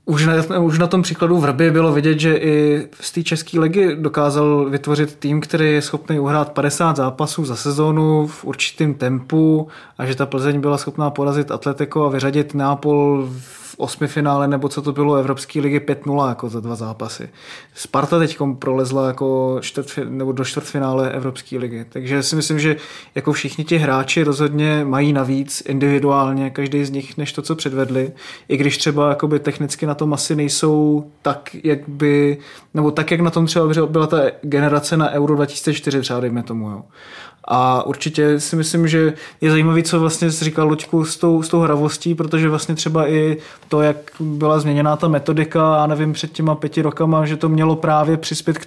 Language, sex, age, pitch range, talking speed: Czech, male, 20-39, 140-155 Hz, 185 wpm